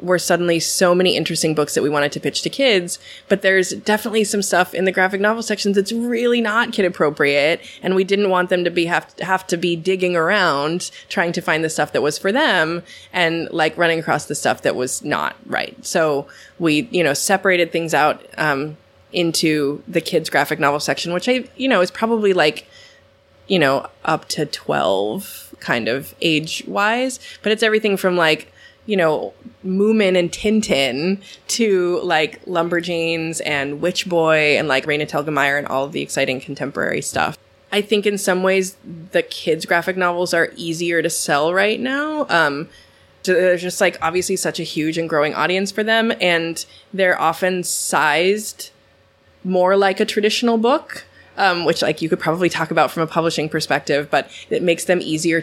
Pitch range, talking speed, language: 160-195 Hz, 185 wpm, English